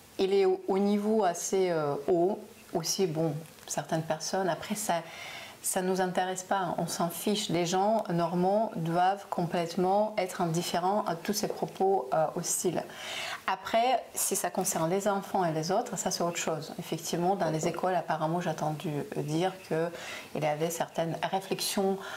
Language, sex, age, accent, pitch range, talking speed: French, female, 30-49, French, 165-190 Hz, 165 wpm